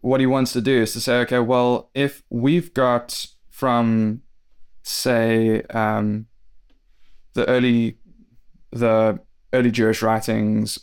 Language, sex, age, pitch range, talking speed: English, male, 20-39, 105-120 Hz, 120 wpm